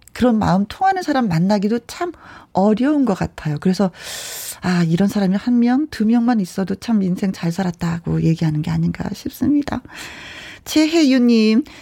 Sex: female